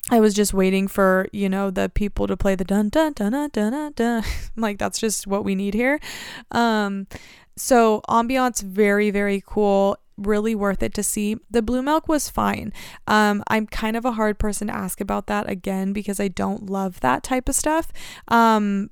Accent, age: American, 20-39